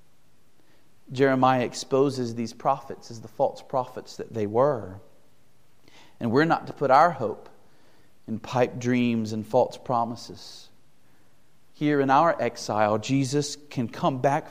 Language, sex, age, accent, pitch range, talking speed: English, male, 40-59, American, 140-185 Hz, 130 wpm